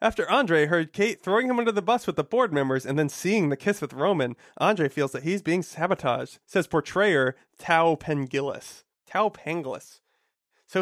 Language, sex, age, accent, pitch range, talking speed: English, male, 30-49, American, 140-200 Hz, 185 wpm